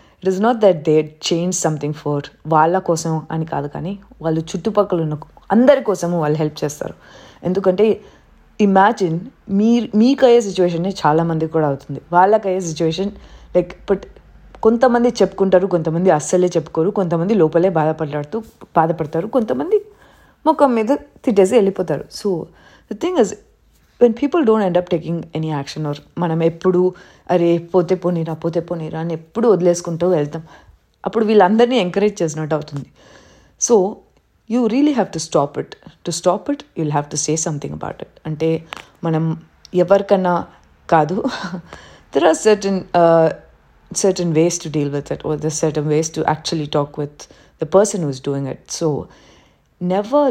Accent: native